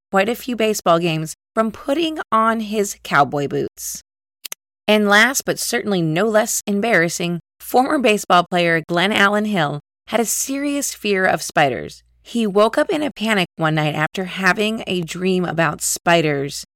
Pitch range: 165-225 Hz